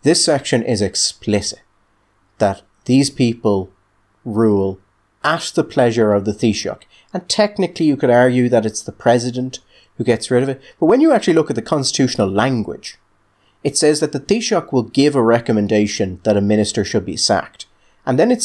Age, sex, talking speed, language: 30-49, male, 180 wpm, English